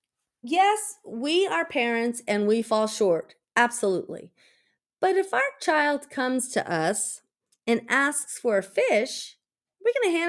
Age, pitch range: 40-59, 230-335 Hz